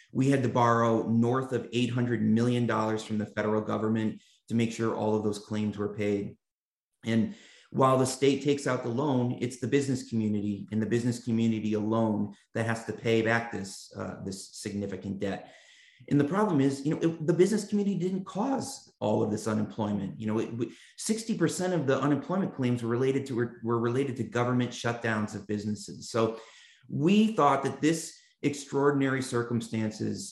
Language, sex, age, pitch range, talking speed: English, male, 30-49, 110-130 Hz, 185 wpm